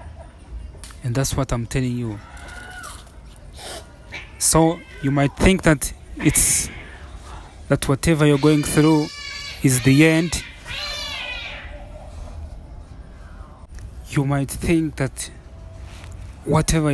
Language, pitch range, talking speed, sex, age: English, 85-135 Hz, 90 wpm, male, 30-49